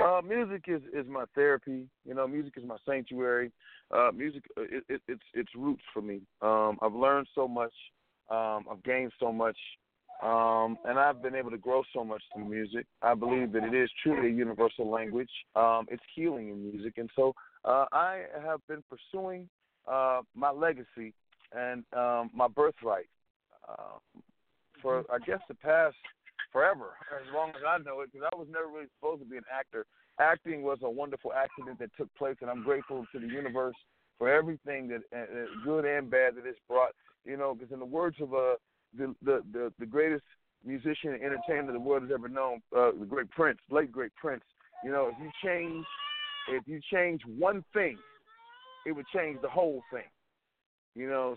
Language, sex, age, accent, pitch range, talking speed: English, male, 40-59, American, 120-160 Hz, 190 wpm